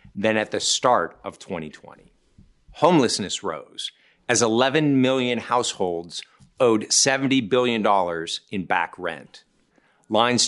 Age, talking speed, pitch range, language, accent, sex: 50-69, 110 wpm, 115-155 Hz, English, American, male